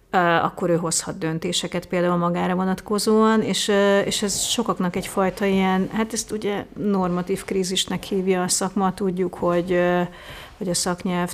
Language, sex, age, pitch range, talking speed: Hungarian, female, 30-49, 175-195 Hz, 140 wpm